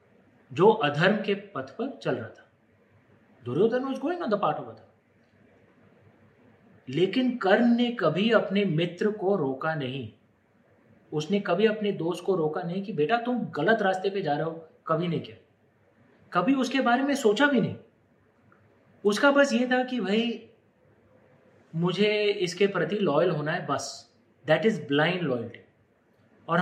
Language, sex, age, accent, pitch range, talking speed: Hindi, male, 30-49, native, 150-225 Hz, 150 wpm